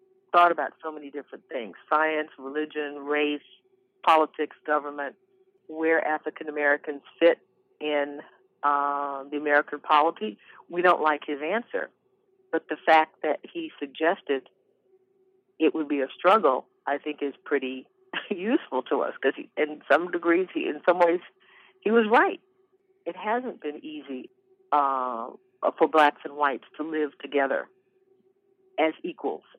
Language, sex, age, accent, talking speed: English, female, 50-69, American, 135 wpm